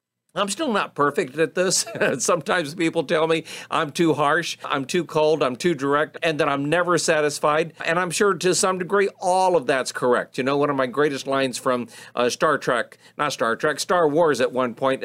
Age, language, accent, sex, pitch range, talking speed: 50-69, English, American, male, 130-170 Hz, 210 wpm